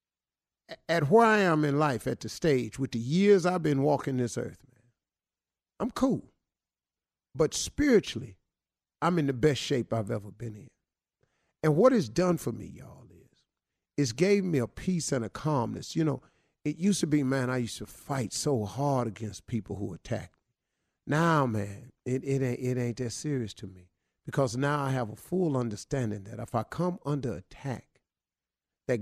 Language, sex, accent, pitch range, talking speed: English, male, American, 125-185 Hz, 185 wpm